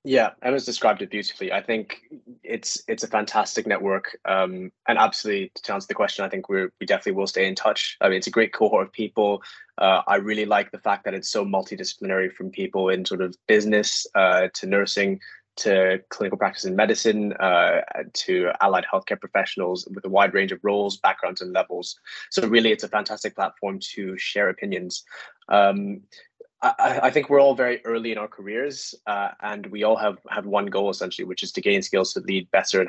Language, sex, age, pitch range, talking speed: English, male, 20-39, 95-110 Hz, 205 wpm